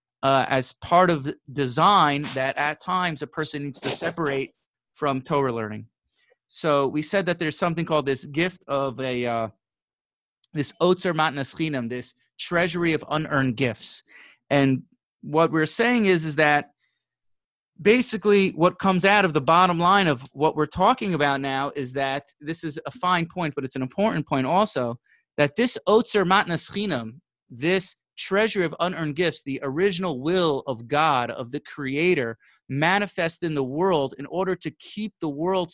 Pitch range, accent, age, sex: 135-180 Hz, American, 30-49, male